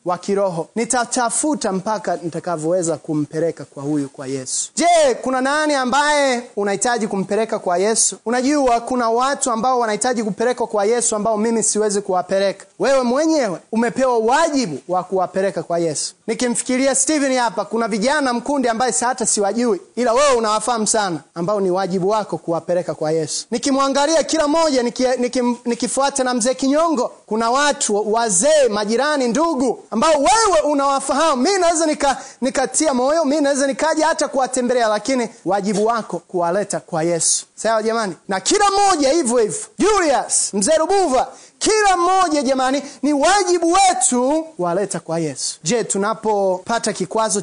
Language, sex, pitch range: Swahili, male, 205-275 Hz